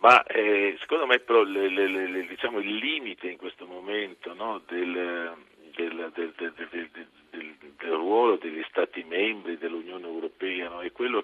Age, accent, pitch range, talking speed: 50-69, native, 345-420 Hz, 165 wpm